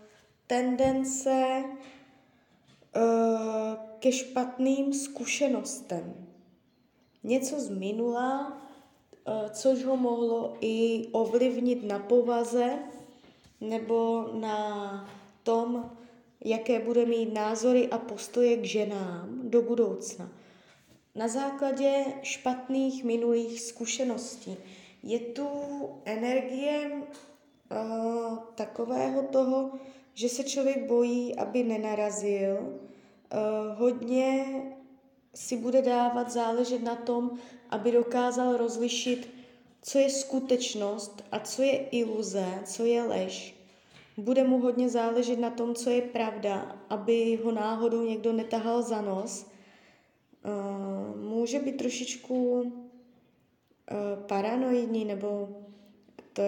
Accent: native